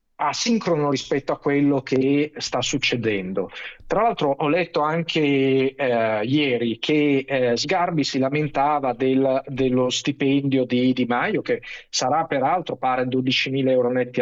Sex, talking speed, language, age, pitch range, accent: male, 130 wpm, Italian, 50-69, 130-165 Hz, native